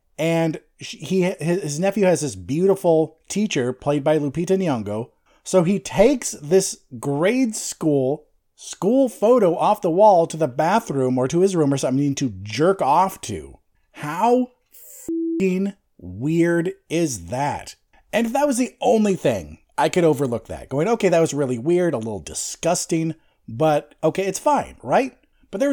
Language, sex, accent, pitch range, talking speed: English, male, American, 145-210 Hz, 160 wpm